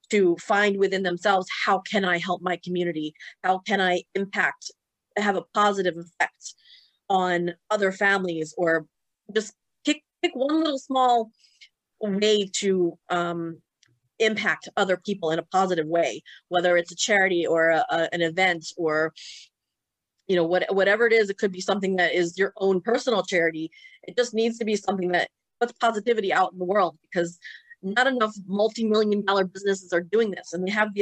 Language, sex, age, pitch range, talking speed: English, female, 30-49, 175-215 Hz, 170 wpm